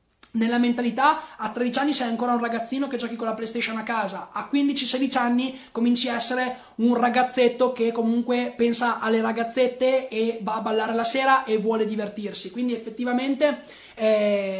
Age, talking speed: 20-39, 170 wpm